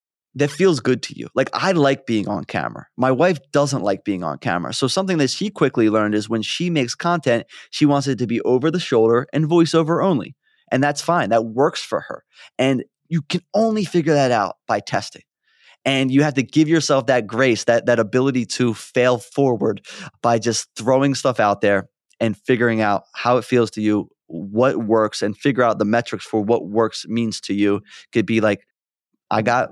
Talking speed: 205 wpm